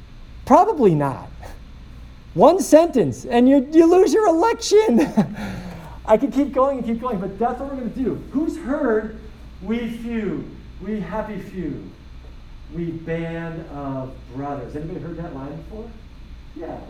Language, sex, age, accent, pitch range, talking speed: English, male, 40-59, American, 135-205 Hz, 145 wpm